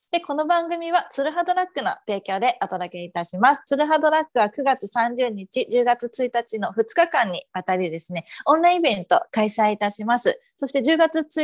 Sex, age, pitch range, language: female, 30-49, 190-270 Hz, Japanese